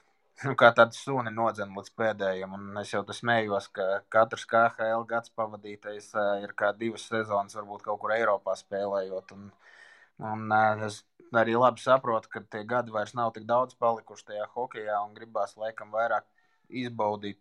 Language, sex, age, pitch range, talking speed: English, male, 20-39, 105-120 Hz, 160 wpm